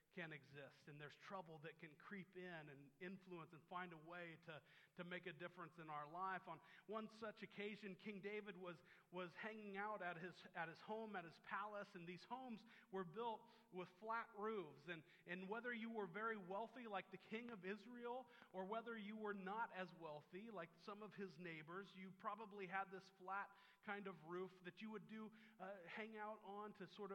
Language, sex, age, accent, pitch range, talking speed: English, male, 40-59, American, 175-205 Hz, 200 wpm